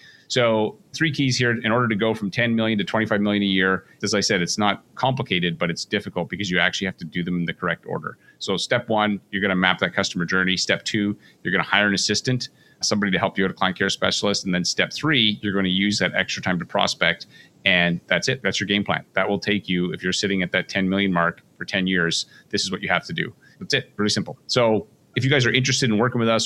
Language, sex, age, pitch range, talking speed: English, male, 30-49, 95-110 Hz, 270 wpm